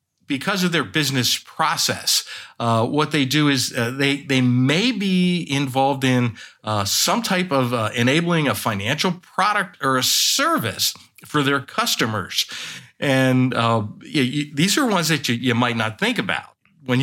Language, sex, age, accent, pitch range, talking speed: English, male, 50-69, American, 115-145 Hz, 165 wpm